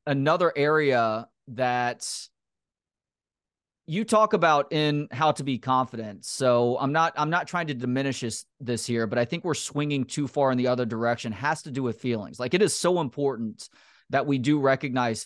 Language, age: English, 30-49